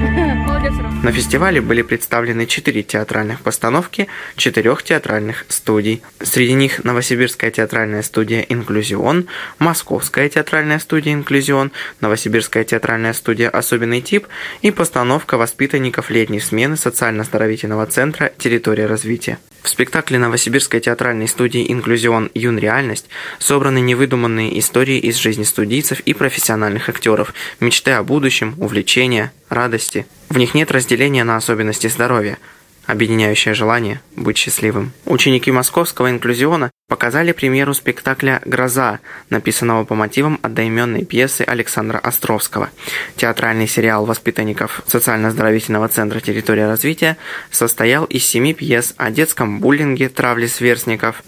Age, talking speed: 20-39, 115 wpm